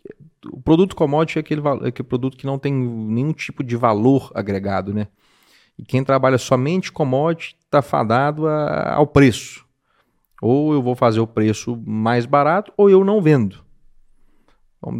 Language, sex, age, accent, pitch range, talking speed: Portuguese, male, 40-59, Brazilian, 105-140 Hz, 160 wpm